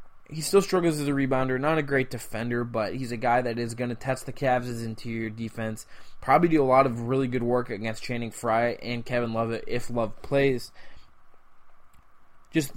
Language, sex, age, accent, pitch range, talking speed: English, male, 20-39, American, 115-140 Hz, 195 wpm